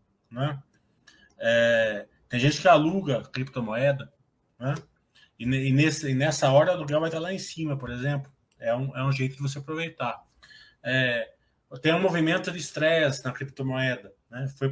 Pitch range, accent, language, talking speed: 135-185 Hz, Brazilian, Portuguese, 150 wpm